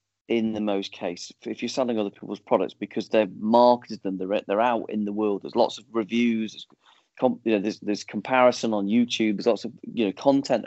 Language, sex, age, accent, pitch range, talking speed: English, male, 30-49, British, 105-130 Hz, 215 wpm